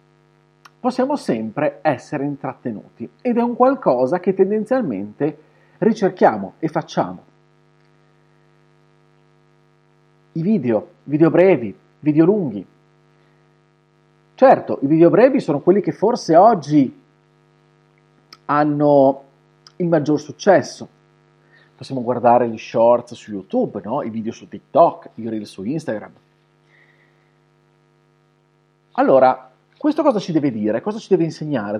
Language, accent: Italian, native